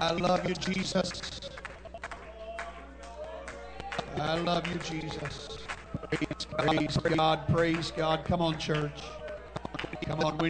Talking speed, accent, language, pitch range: 110 wpm, American, English, 140-165 Hz